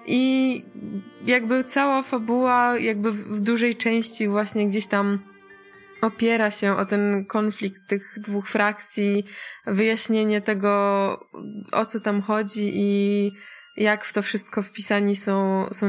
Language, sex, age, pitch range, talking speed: Polish, female, 20-39, 200-225 Hz, 125 wpm